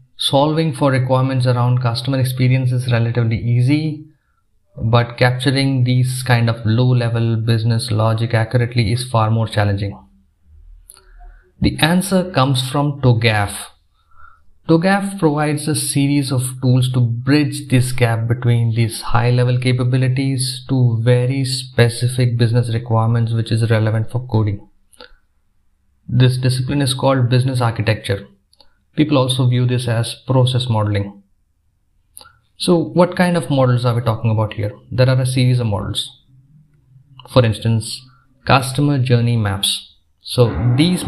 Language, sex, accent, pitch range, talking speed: English, male, Indian, 115-130 Hz, 125 wpm